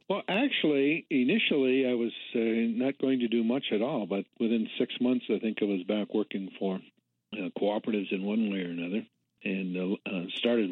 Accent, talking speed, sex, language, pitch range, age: American, 190 wpm, male, English, 90-110 Hz, 60-79